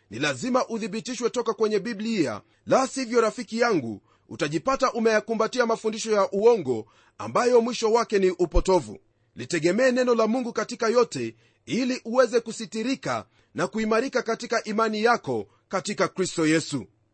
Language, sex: Swahili, male